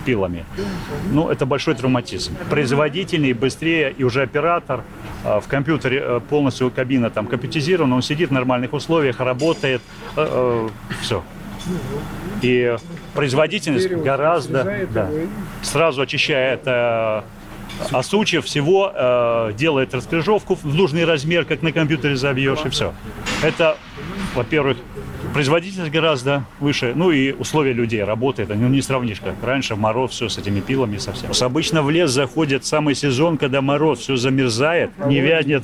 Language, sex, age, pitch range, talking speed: Russian, male, 30-49, 125-155 Hz, 140 wpm